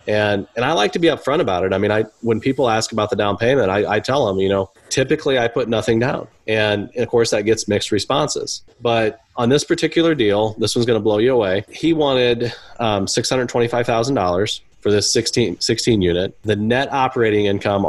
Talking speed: 210 wpm